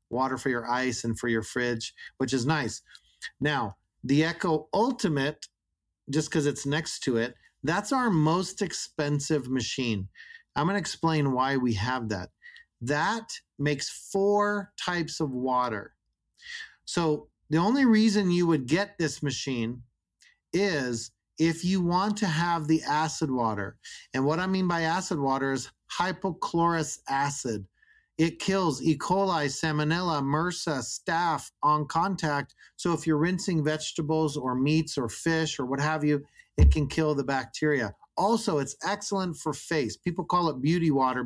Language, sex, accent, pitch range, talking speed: English, male, American, 130-170 Hz, 155 wpm